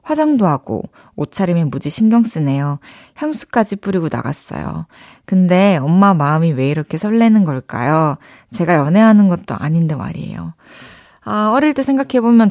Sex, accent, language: female, native, Korean